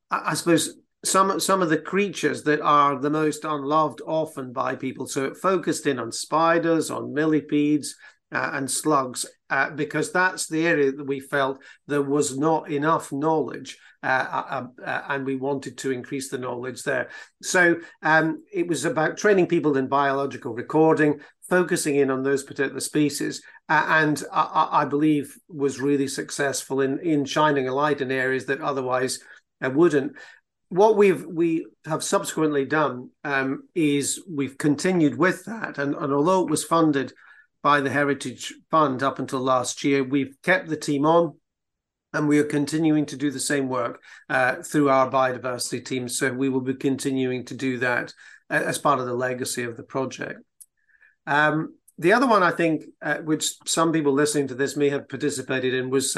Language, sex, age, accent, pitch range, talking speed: English, male, 50-69, British, 135-155 Hz, 175 wpm